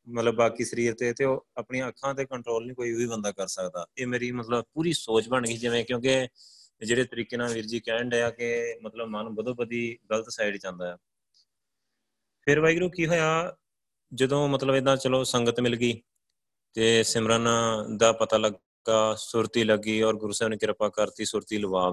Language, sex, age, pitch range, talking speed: Punjabi, male, 30-49, 105-125 Hz, 180 wpm